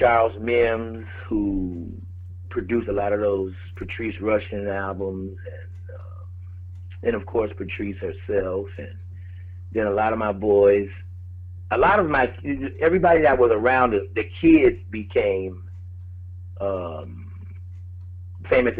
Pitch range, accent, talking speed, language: 90-105 Hz, American, 125 wpm, English